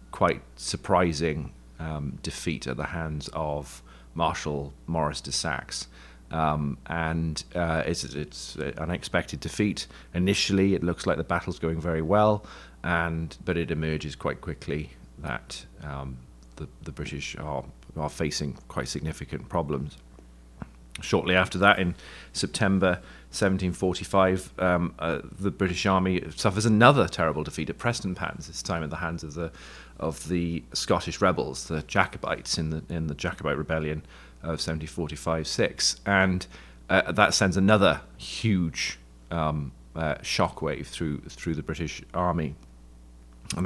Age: 40-59